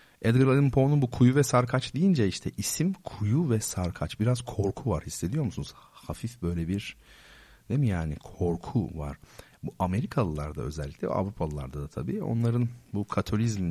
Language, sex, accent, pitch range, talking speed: Turkish, male, native, 85-110 Hz, 160 wpm